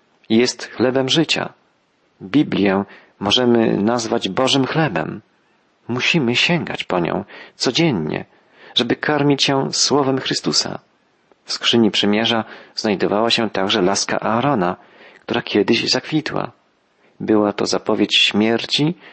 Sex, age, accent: male, 40-59, native